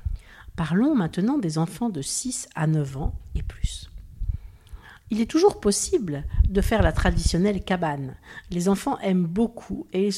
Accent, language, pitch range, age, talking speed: French, French, 150-215 Hz, 50-69, 155 wpm